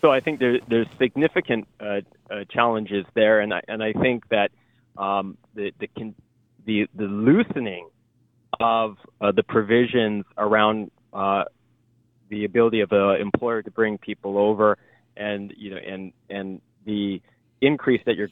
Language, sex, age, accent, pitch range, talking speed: English, male, 30-49, American, 105-125 Hz, 150 wpm